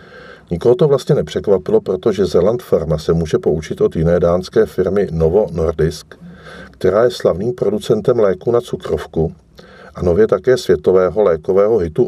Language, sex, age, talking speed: Czech, male, 50-69, 145 wpm